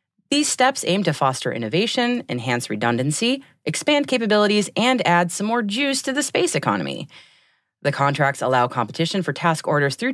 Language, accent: English, American